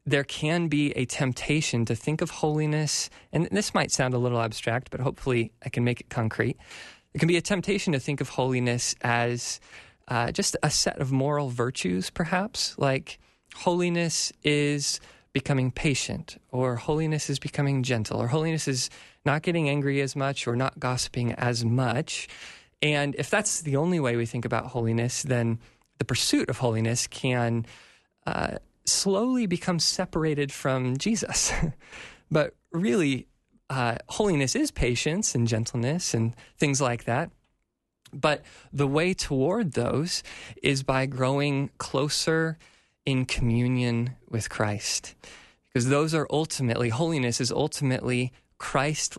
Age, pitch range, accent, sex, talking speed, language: 20-39, 120-155 Hz, American, male, 145 wpm, English